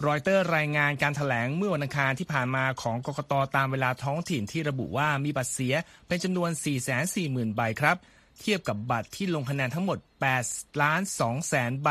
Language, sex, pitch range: Thai, male, 120-160 Hz